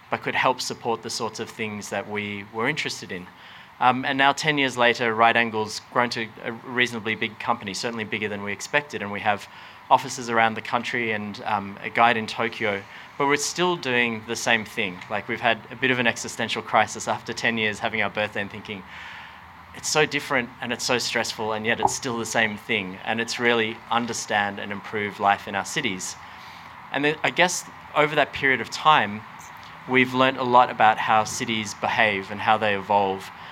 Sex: male